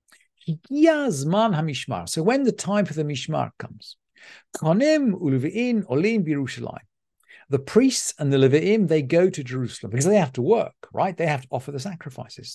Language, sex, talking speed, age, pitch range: English, male, 140 wpm, 50-69, 130-175 Hz